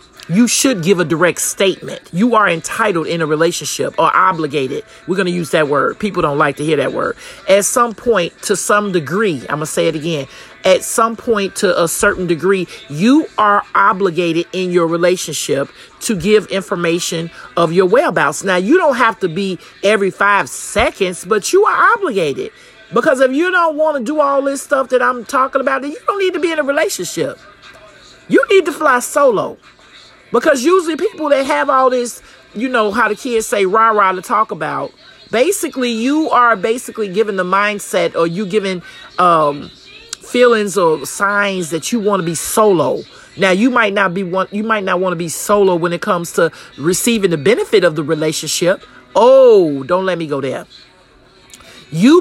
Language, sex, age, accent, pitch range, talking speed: English, male, 40-59, American, 175-250 Hz, 185 wpm